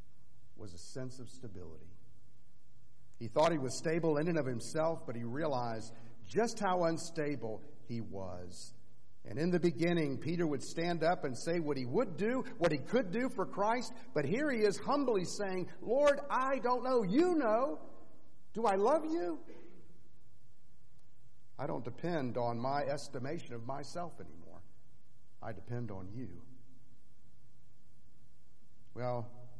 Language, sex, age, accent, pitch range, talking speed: English, male, 50-69, American, 120-160 Hz, 145 wpm